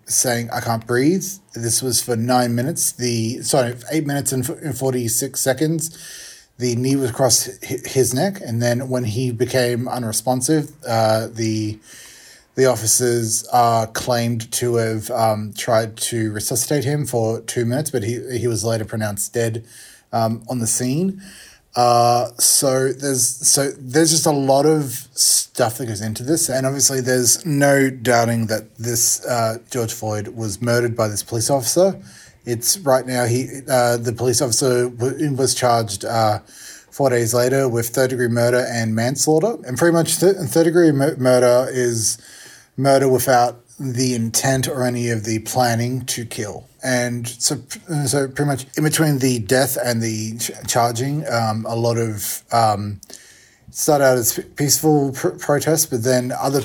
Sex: male